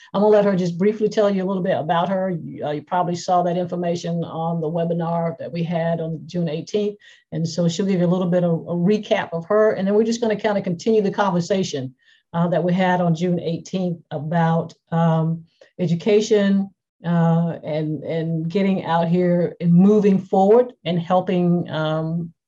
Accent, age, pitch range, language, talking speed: American, 50-69, 165-195 Hz, English, 200 wpm